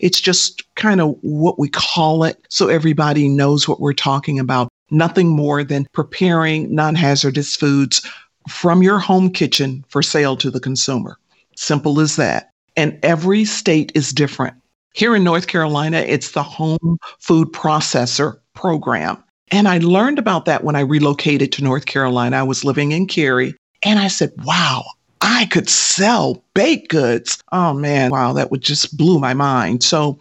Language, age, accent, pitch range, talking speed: English, 50-69, American, 145-180 Hz, 165 wpm